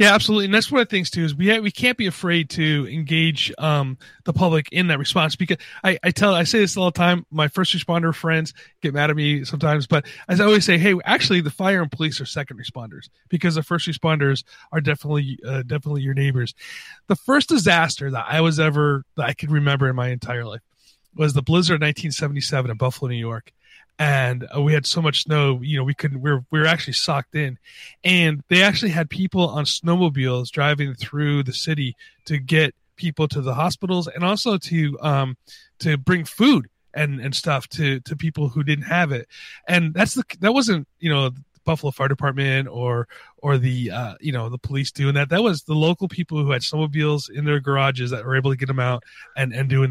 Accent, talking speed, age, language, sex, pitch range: American, 220 wpm, 30-49, English, male, 135-170 Hz